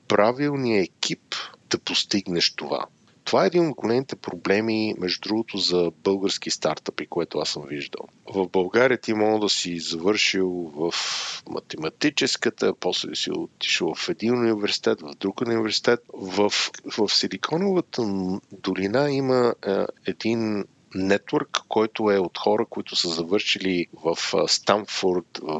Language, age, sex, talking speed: Bulgarian, 50-69, male, 135 wpm